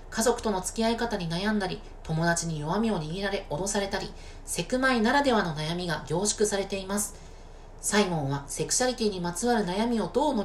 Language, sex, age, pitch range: Japanese, female, 40-59, 165-230 Hz